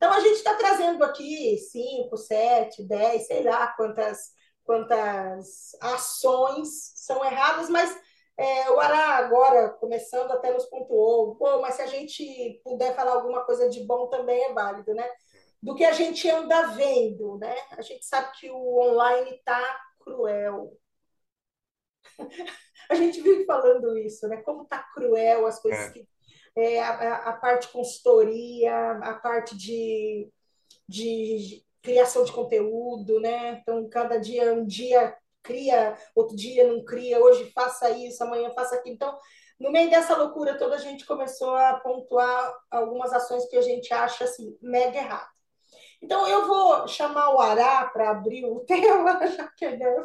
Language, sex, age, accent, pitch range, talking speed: Portuguese, female, 20-39, Brazilian, 230-295 Hz, 155 wpm